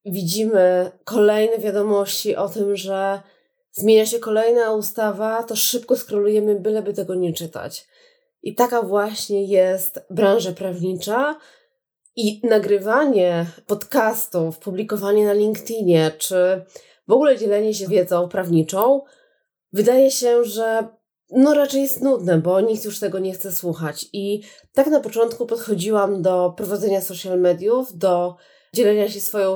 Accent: native